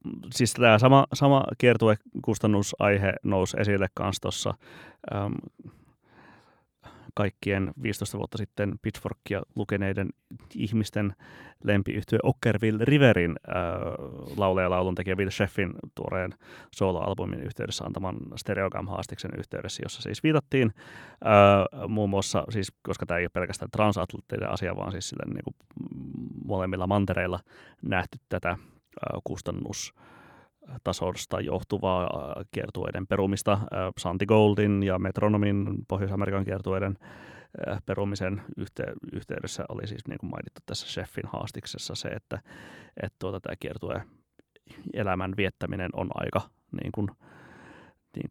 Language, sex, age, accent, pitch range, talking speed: Finnish, male, 30-49, native, 95-110 Hz, 105 wpm